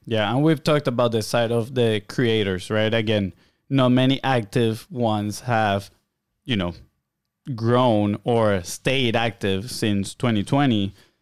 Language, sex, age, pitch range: English, male, 20-39, 110-130 Hz